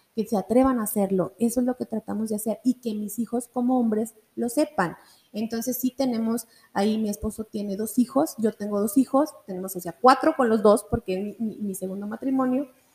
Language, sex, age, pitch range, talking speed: Spanish, female, 30-49, 205-240 Hz, 220 wpm